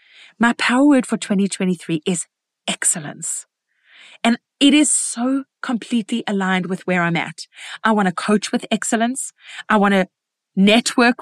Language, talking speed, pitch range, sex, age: English, 145 wpm, 205-270 Hz, female, 30-49